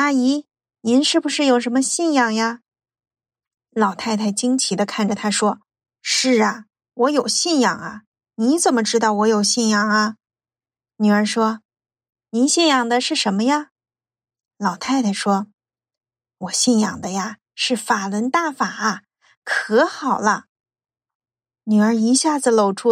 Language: Chinese